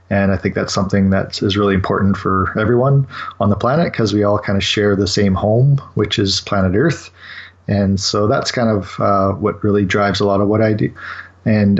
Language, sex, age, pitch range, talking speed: English, male, 30-49, 95-105 Hz, 220 wpm